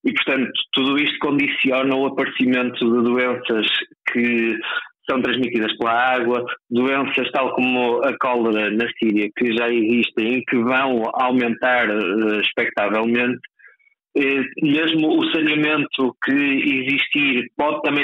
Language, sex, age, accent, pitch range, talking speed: Portuguese, male, 20-39, Portuguese, 115-135 Hz, 125 wpm